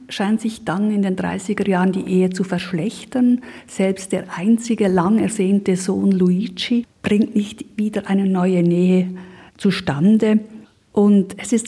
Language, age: German, 50-69